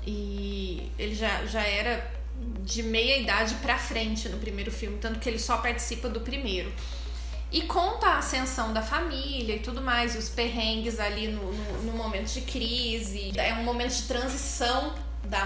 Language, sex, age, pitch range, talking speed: Portuguese, female, 20-39, 210-255 Hz, 170 wpm